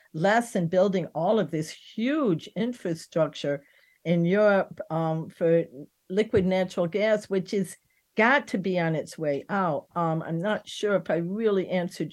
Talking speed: 160 wpm